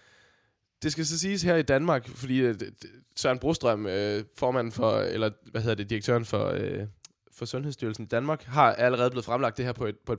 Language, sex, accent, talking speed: Danish, male, native, 185 wpm